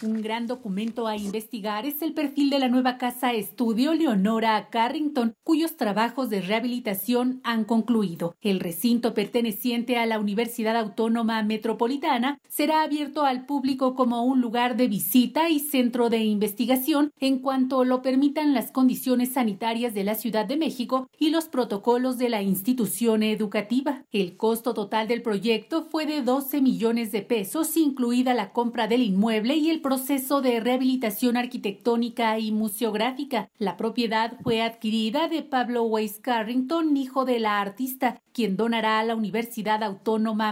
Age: 40-59